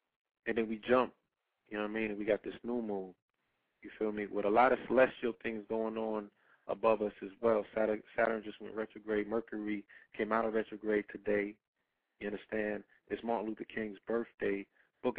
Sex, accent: male, American